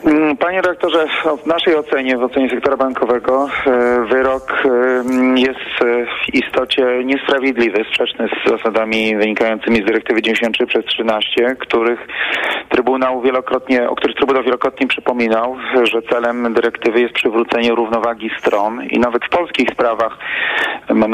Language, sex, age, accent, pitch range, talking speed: Polish, male, 40-59, native, 110-130 Hz, 125 wpm